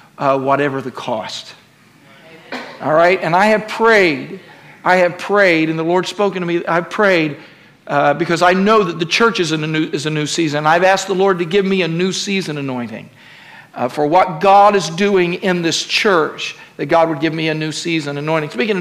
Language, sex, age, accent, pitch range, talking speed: English, male, 50-69, American, 145-185 Hz, 210 wpm